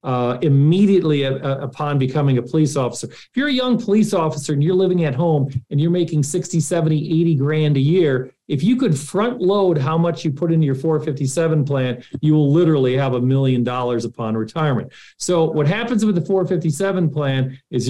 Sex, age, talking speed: male, 40-59, 190 wpm